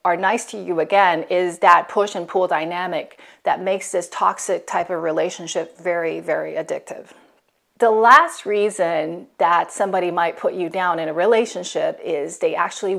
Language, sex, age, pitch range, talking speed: English, female, 30-49, 180-235 Hz, 165 wpm